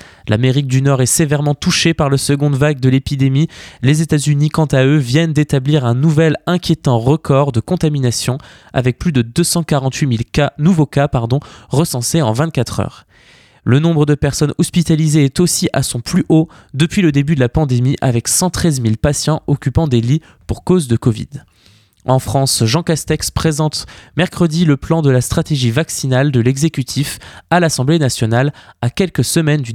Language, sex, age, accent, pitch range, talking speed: French, male, 20-39, French, 125-155 Hz, 175 wpm